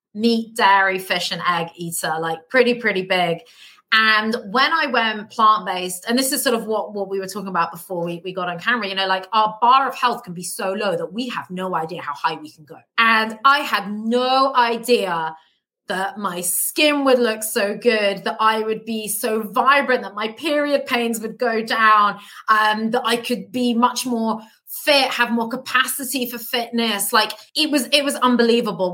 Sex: female